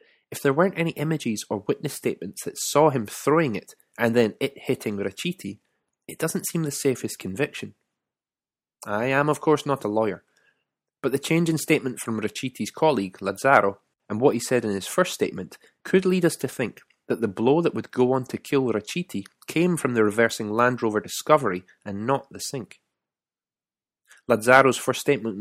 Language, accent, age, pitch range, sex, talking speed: English, British, 20-39, 105-140 Hz, male, 180 wpm